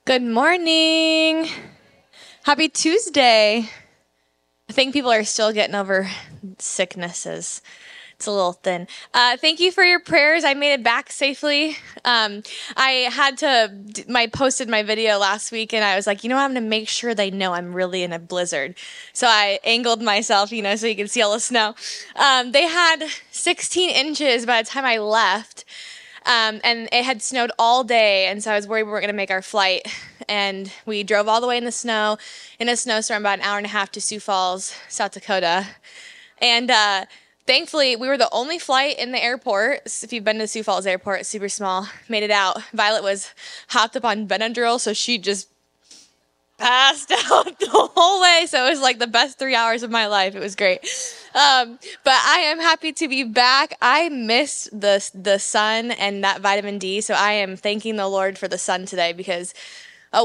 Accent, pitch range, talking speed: American, 200-275 Hz, 200 wpm